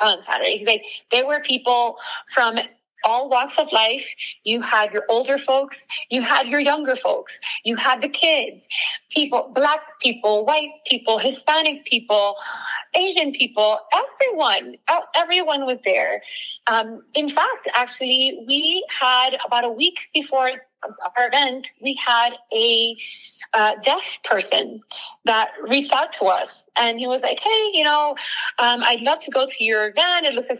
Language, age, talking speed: English, 30-49, 155 wpm